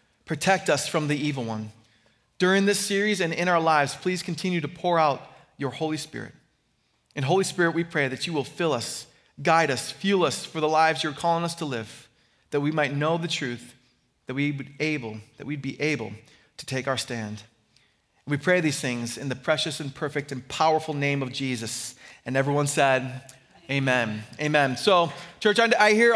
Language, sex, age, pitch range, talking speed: English, male, 30-49, 145-205 Hz, 185 wpm